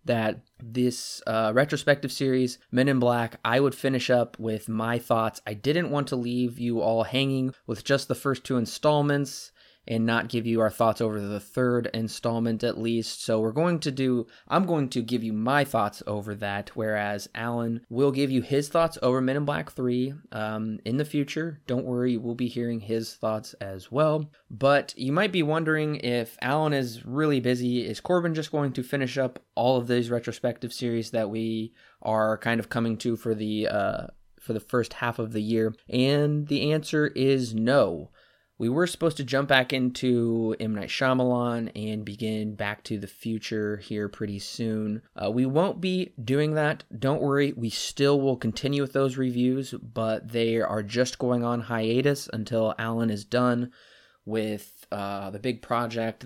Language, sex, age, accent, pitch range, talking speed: English, male, 20-39, American, 110-135 Hz, 185 wpm